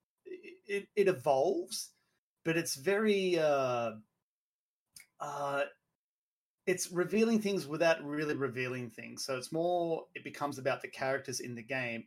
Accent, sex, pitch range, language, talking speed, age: Australian, male, 125-175 Hz, English, 130 wpm, 30-49